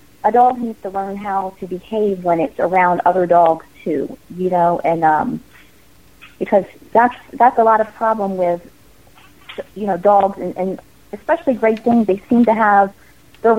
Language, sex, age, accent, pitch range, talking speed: English, female, 40-59, American, 175-210 Hz, 170 wpm